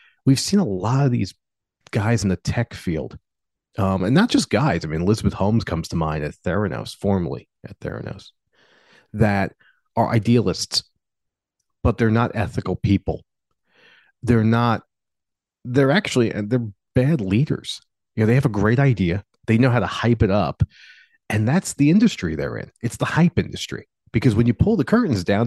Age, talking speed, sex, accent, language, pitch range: 40-59, 175 wpm, male, American, English, 95-130 Hz